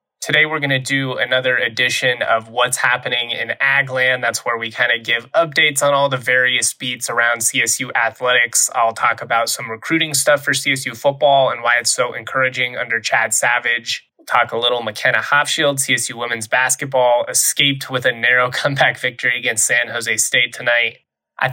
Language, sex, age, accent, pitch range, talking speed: English, male, 20-39, American, 120-140 Hz, 180 wpm